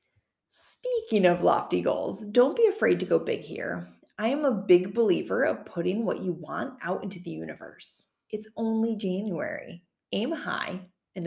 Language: English